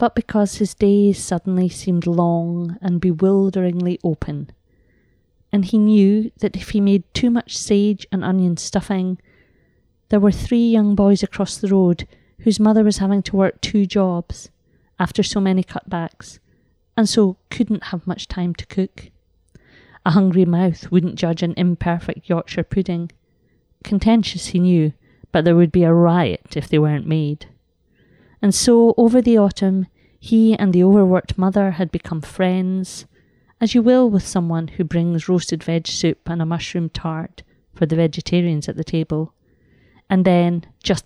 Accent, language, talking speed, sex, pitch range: British, English, 160 wpm, female, 165-200 Hz